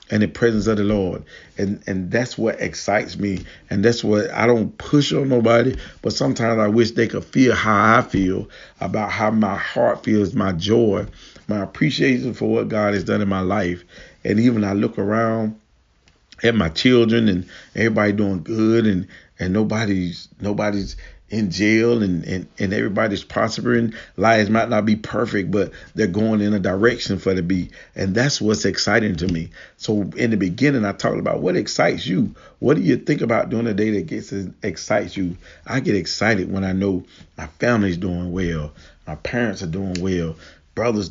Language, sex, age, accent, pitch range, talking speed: English, male, 40-59, American, 95-115 Hz, 185 wpm